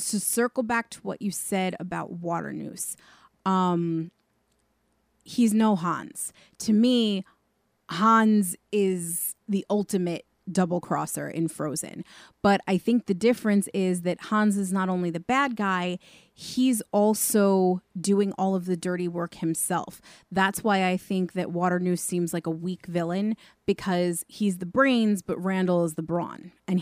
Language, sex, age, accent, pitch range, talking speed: English, female, 30-49, American, 180-210 Hz, 145 wpm